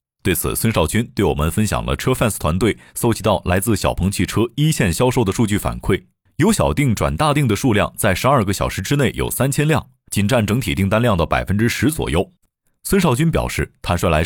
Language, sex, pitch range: Chinese, male, 90-125 Hz